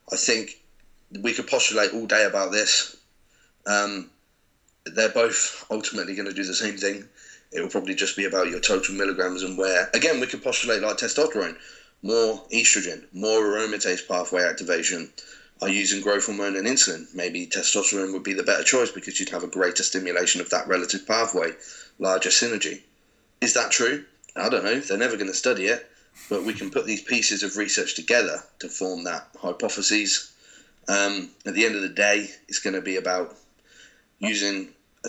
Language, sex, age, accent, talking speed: English, male, 30-49, British, 180 wpm